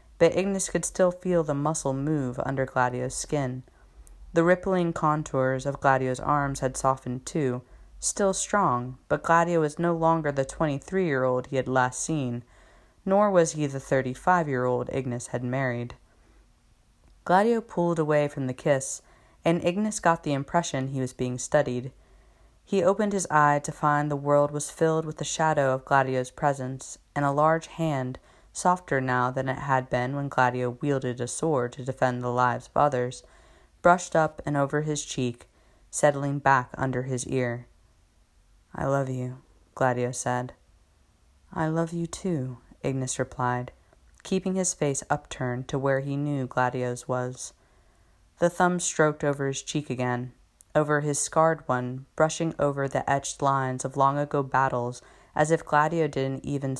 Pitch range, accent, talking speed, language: 125-155 Hz, American, 165 wpm, English